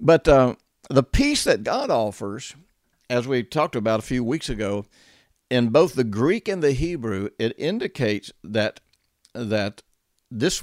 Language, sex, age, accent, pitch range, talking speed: English, male, 60-79, American, 100-135 Hz, 150 wpm